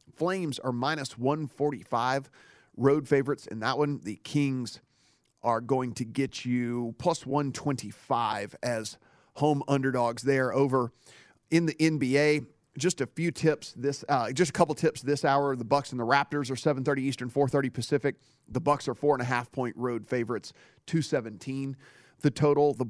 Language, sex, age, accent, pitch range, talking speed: English, male, 40-59, American, 125-150 Hz, 175 wpm